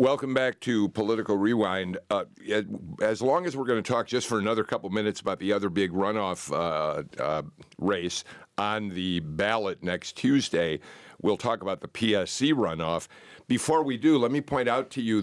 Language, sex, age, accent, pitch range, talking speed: English, male, 50-69, American, 100-125 Hz, 180 wpm